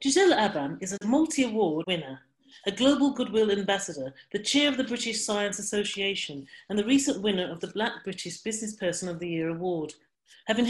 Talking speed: 180 wpm